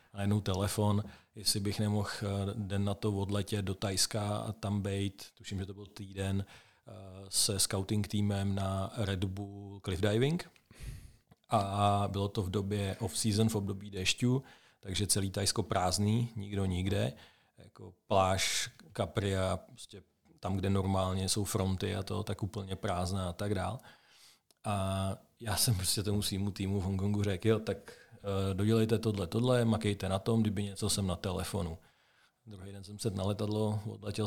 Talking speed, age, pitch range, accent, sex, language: 155 wpm, 40-59, 100-110 Hz, native, male, Czech